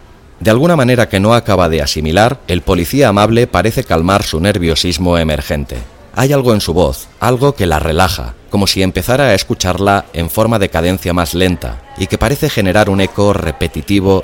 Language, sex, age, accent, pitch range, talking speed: Spanish, male, 30-49, Spanish, 80-105 Hz, 180 wpm